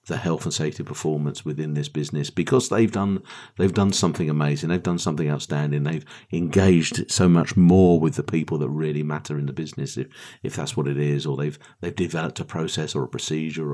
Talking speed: 210 wpm